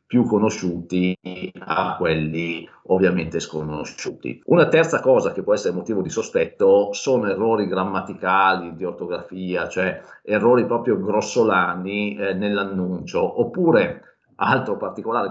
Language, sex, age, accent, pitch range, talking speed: Italian, male, 40-59, native, 95-155 Hz, 115 wpm